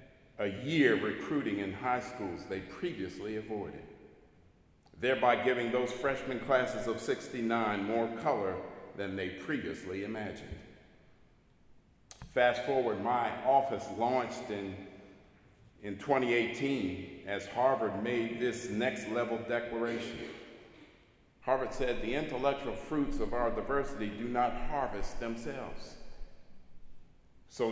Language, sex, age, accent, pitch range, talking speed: English, male, 50-69, American, 100-125 Hz, 110 wpm